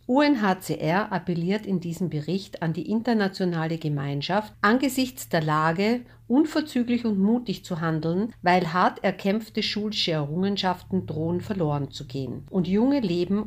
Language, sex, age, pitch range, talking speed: German, female, 50-69, 155-200 Hz, 130 wpm